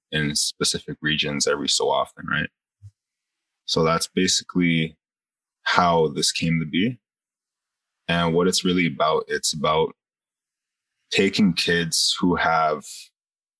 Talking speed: 115 wpm